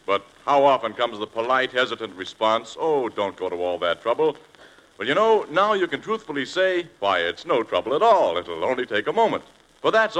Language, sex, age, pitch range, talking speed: English, male, 60-79, 140-200 Hz, 210 wpm